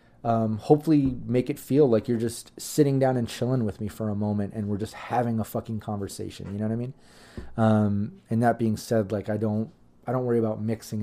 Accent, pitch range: American, 105-120 Hz